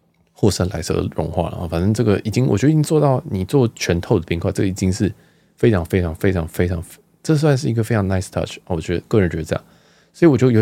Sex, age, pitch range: male, 20-39, 90-130 Hz